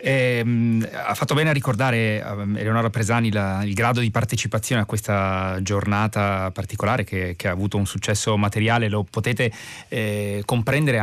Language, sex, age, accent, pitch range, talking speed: Italian, male, 30-49, native, 100-110 Hz, 165 wpm